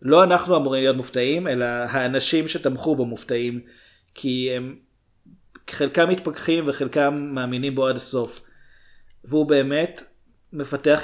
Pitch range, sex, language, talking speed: 120-145 Hz, male, Hebrew, 120 wpm